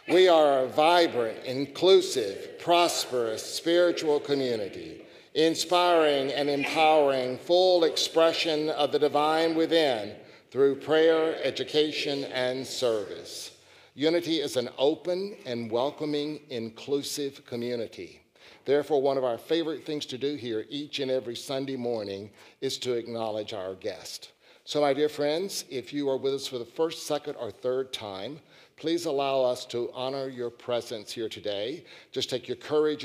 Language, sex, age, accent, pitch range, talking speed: English, male, 60-79, American, 125-160 Hz, 140 wpm